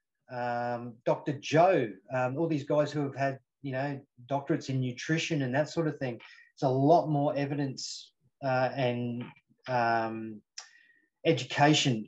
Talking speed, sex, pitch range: 145 wpm, male, 125-155 Hz